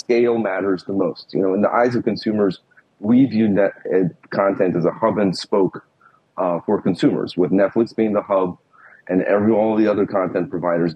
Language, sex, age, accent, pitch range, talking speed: English, male, 30-49, American, 95-115 Hz, 195 wpm